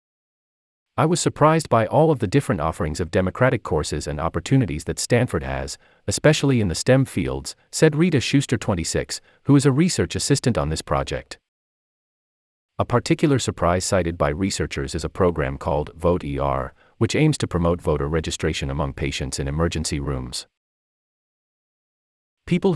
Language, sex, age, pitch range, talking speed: English, male, 40-59, 75-120 Hz, 155 wpm